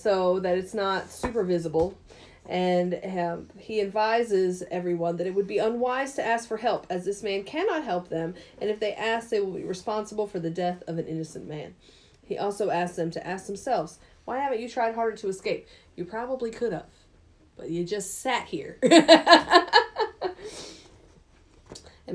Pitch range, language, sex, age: 175-235 Hz, English, female, 30-49